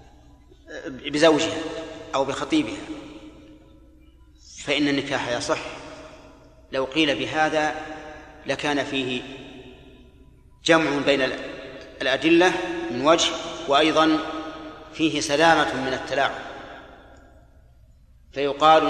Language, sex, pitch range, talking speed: Arabic, male, 135-165 Hz, 70 wpm